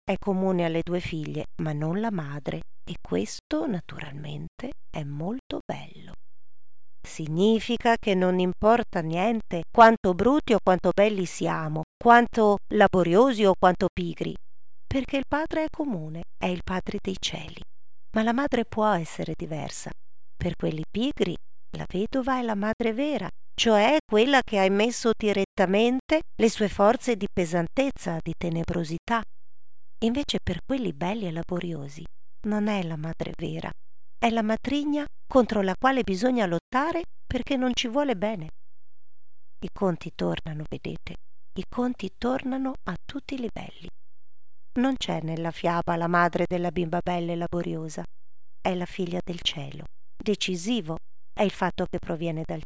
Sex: female